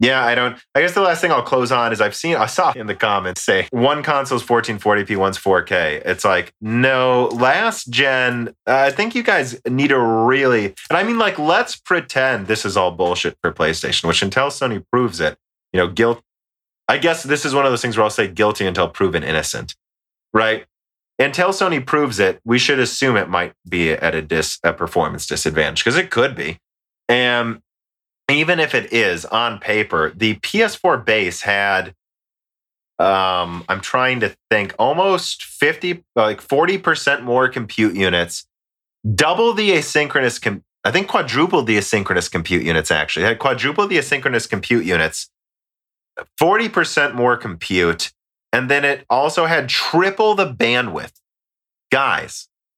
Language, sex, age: English, male, 30-49